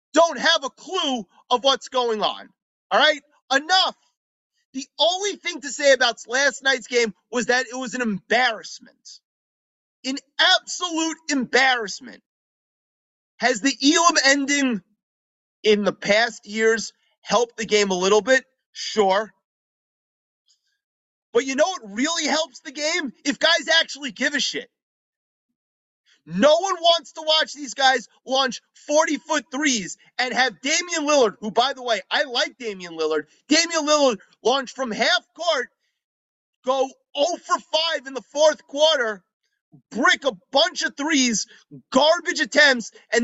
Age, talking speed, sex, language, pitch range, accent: 30-49, 140 wpm, male, English, 245-320 Hz, American